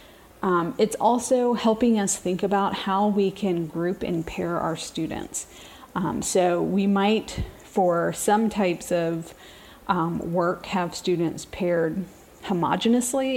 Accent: American